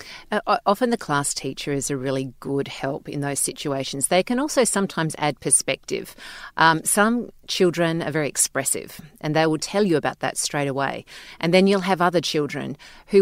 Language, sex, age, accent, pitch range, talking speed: English, female, 40-59, Australian, 150-200 Hz, 185 wpm